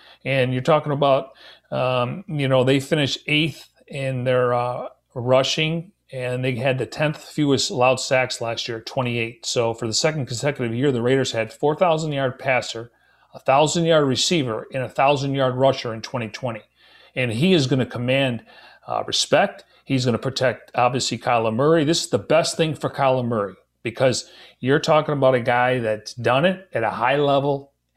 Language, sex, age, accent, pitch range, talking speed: English, male, 40-59, American, 120-135 Hz, 180 wpm